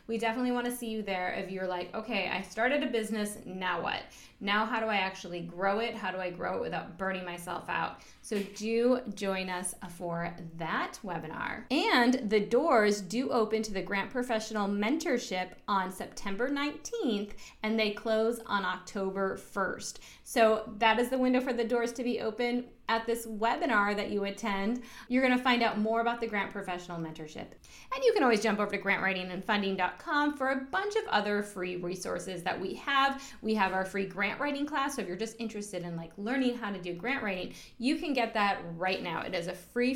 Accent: American